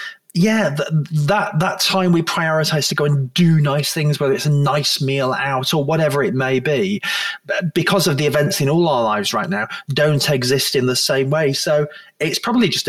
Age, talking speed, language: 20-39, 205 wpm, English